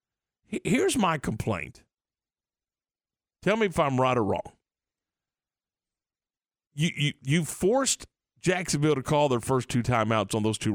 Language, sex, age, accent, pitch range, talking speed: English, male, 50-69, American, 135-200 Hz, 135 wpm